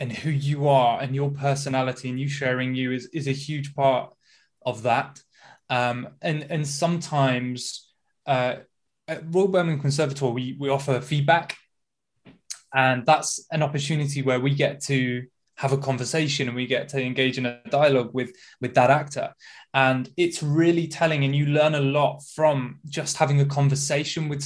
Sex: male